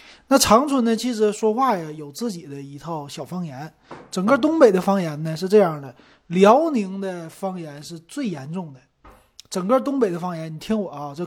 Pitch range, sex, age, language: 155-215 Hz, male, 30-49, Chinese